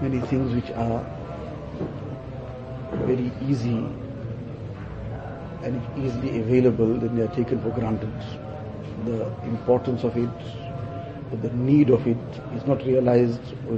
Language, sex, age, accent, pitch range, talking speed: English, male, 50-69, Indian, 120-135 Hz, 125 wpm